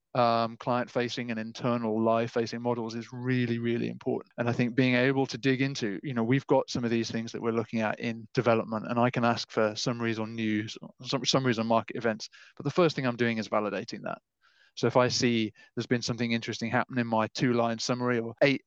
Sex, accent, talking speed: male, British, 220 wpm